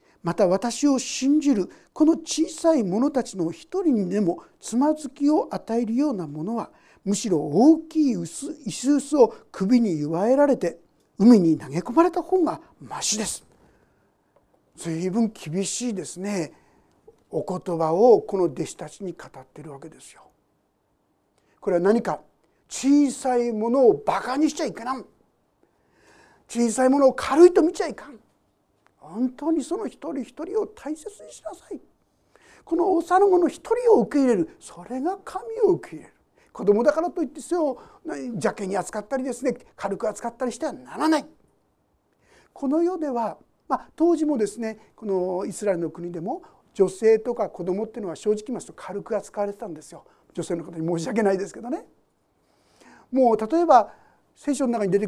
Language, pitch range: Japanese, 195-315 Hz